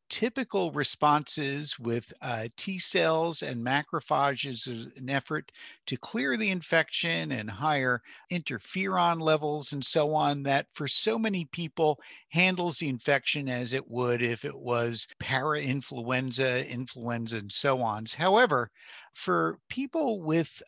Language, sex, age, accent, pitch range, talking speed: English, male, 50-69, American, 125-170 Hz, 130 wpm